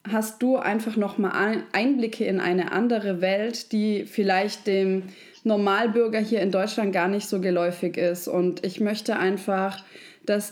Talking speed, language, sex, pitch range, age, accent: 155 wpm, German, female, 195-260 Hz, 20-39, German